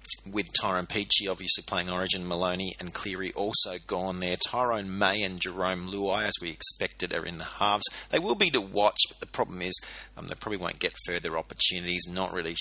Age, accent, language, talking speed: 30-49, Australian, English, 200 wpm